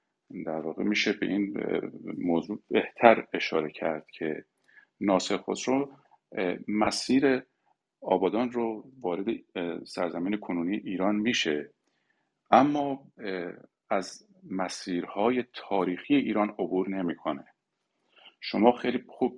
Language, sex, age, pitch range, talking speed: Persian, male, 50-69, 95-115 Hz, 90 wpm